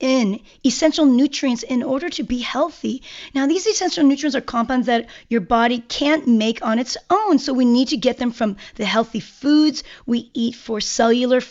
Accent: American